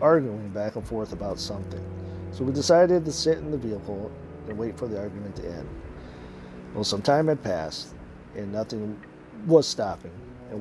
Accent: American